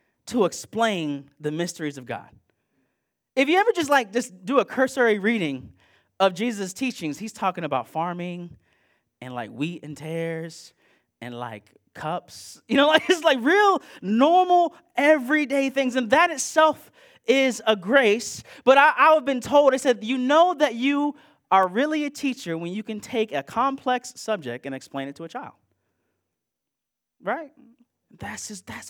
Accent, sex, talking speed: American, male, 165 wpm